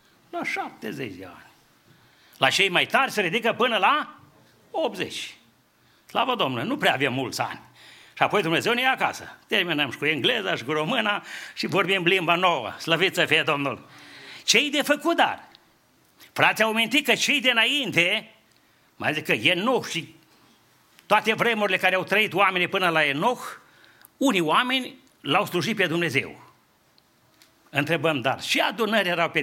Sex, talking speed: male, 155 wpm